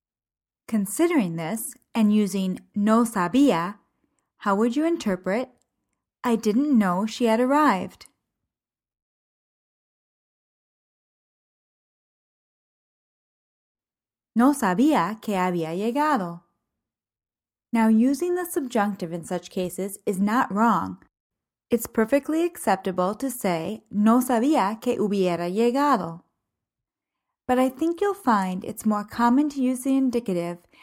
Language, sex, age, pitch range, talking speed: English, female, 20-39, 195-255 Hz, 105 wpm